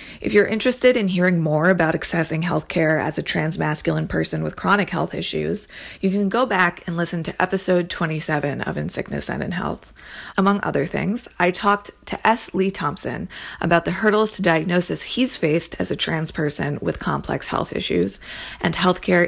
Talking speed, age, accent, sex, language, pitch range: 185 wpm, 20-39, American, female, English, 165-195 Hz